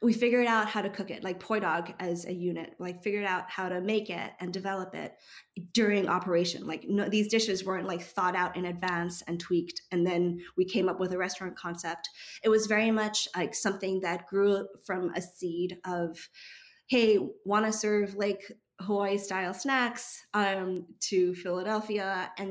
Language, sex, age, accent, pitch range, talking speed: English, female, 20-39, American, 180-210 Hz, 185 wpm